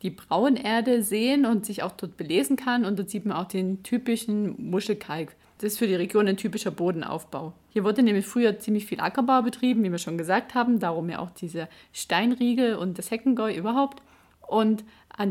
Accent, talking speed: German, 190 wpm